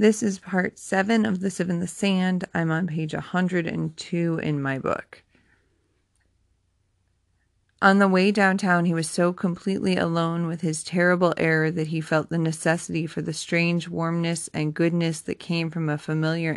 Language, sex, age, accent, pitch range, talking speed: English, female, 30-49, American, 155-175 Hz, 165 wpm